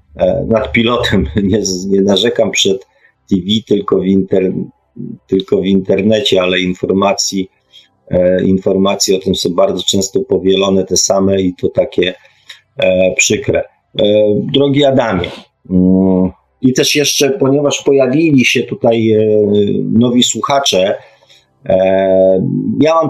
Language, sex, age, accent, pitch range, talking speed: Polish, male, 40-59, native, 95-110 Hz, 105 wpm